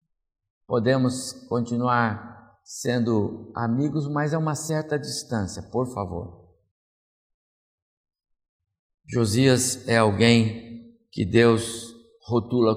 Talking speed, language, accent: 80 wpm, Portuguese, Brazilian